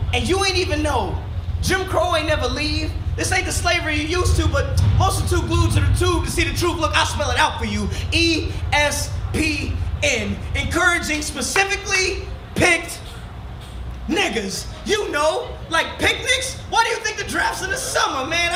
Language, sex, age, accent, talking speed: English, male, 20-39, American, 180 wpm